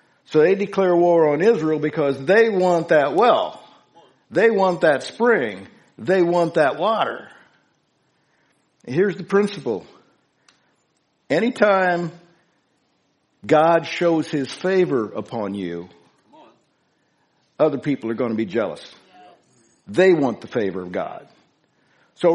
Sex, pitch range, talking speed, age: male, 130-175 Hz, 115 wpm, 60-79